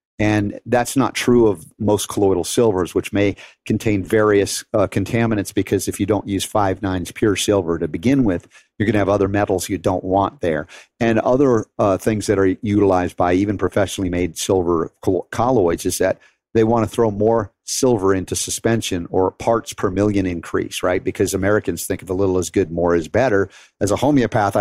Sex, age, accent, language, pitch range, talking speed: male, 50-69, American, English, 95-115 Hz, 195 wpm